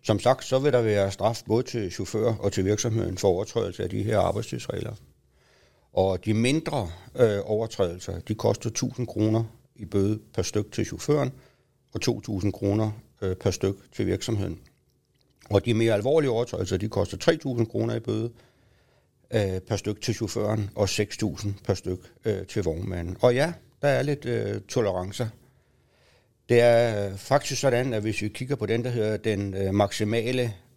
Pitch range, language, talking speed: 100-125 Hz, Danish, 165 wpm